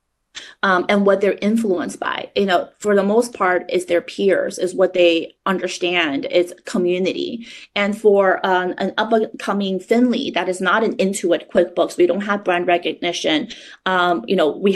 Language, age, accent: English, 30-49, American